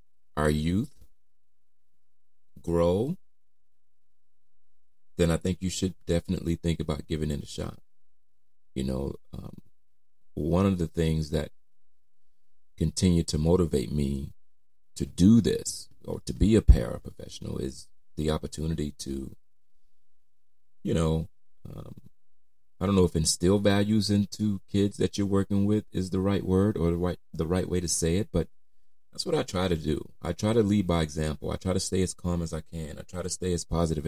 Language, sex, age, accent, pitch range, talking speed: English, male, 30-49, American, 75-95 Hz, 165 wpm